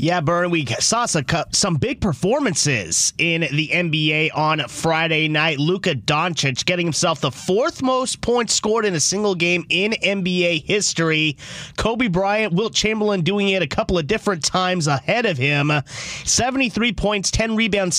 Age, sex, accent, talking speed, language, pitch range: 30-49, male, American, 155 wpm, English, 155-200 Hz